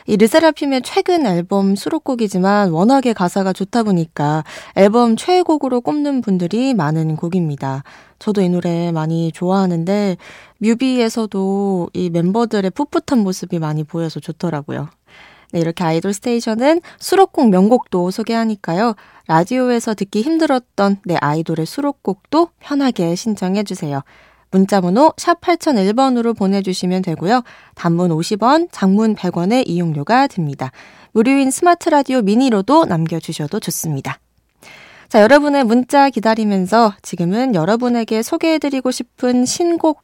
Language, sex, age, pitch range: Korean, female, 20-39, 175-260 Hz